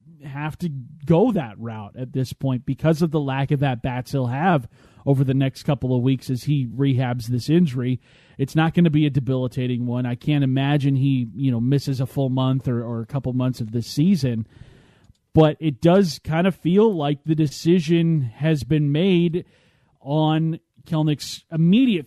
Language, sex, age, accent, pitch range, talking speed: English, male, 30-49, American, 125-160 Hz, 190 wpm